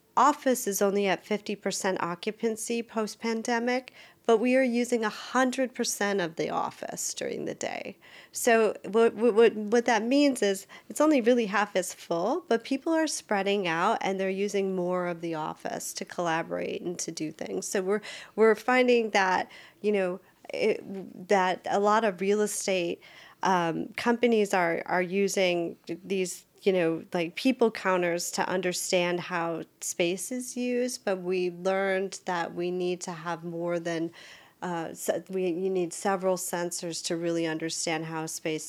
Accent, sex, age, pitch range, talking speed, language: American, female, 40-59, 170-215 Hz, 165 wpm, English